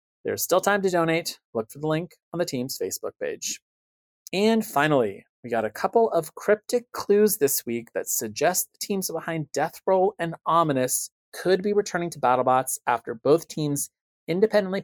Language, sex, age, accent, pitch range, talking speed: English, male, 30-49, American, 125-170 Hz, 175 wpm